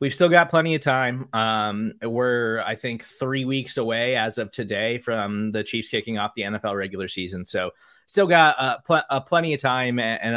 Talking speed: 185 wpm